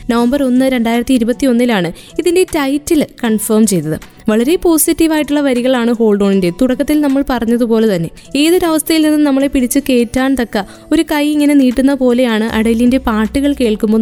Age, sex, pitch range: 20-39, female, 235-290 Hz